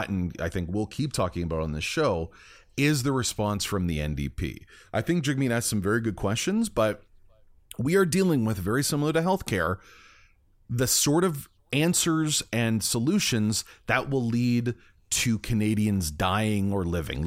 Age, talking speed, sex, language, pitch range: 30-49, 165 wpm, male, English, 100-140 Hz